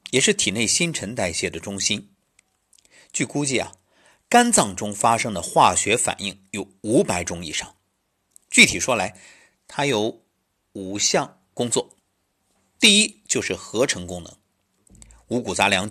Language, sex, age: Chinese, male, 50-69